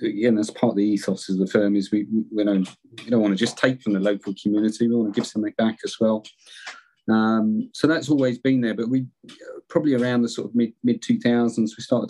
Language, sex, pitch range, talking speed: English, male, 105-115 Hz, 250 wpm